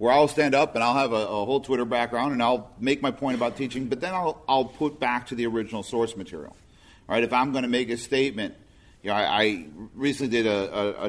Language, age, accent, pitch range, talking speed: English, 50-69, American, 115-145 Hz, 260 wpm